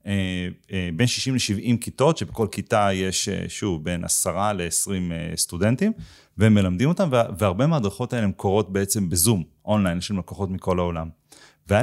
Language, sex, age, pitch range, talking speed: Hebrew, male, 30-49, 95-120 Hz, 135 wpm